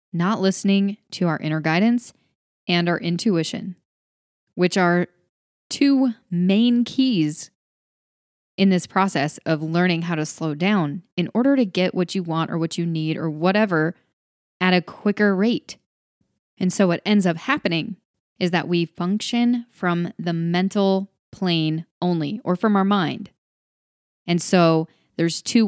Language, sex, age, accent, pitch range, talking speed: English, female, 20-39, American, 170-215 Hz, 145 wpm